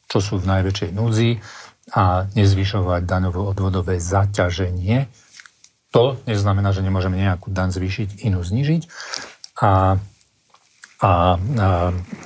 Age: 40-59